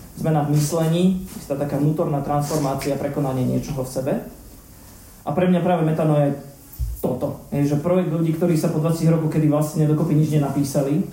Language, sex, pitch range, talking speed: Slovak, male, 140-165 Hz, 165 wpm